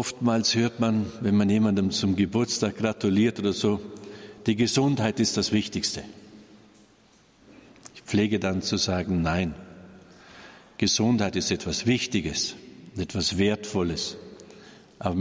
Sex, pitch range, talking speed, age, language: male, 100-115 Hz, 115 wpm, 50-69, German